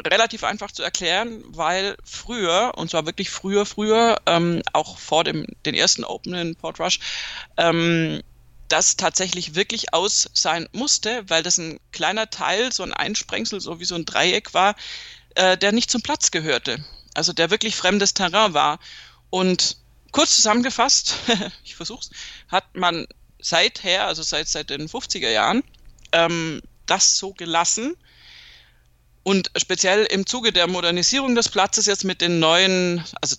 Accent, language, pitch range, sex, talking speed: German, German, 160-205 Hz, female, 150 wpm